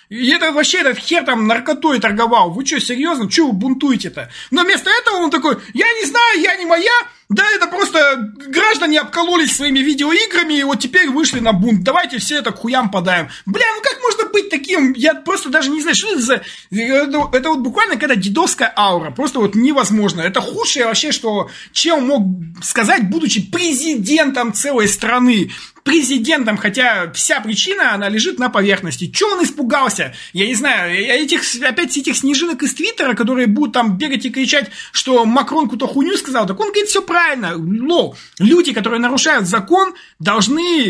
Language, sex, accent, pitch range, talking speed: Russian, male, native, 220-315 Hz, 175 wpm